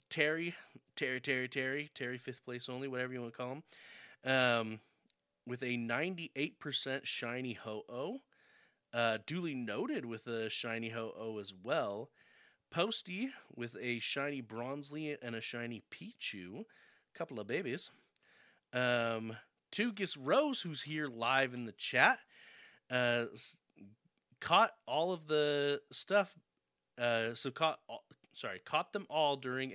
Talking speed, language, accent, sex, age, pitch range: 135 wpm, English, American, male, 30-49, 115-150 Hz